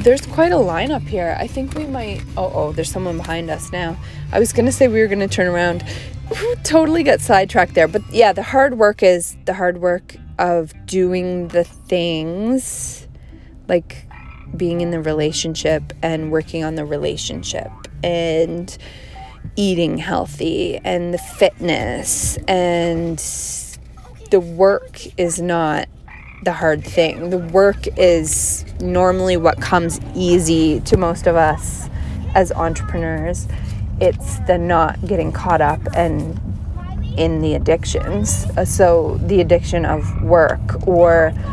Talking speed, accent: 135 wpm, American